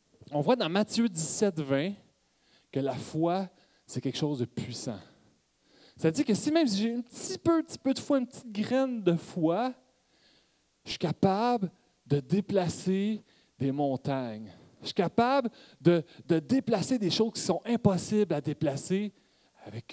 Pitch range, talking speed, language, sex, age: 145-215 Hz, 165 wpm, French, male, 30-49